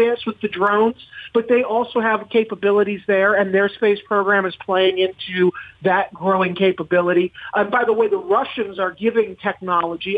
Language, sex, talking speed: English, male, 170 wpm